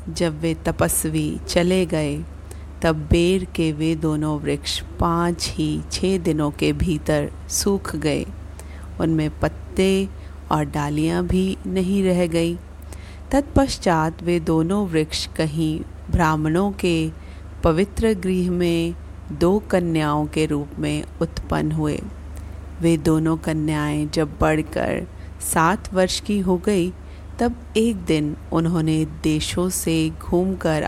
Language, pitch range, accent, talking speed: Hindi, 135-180 Hz, native, 120 wpm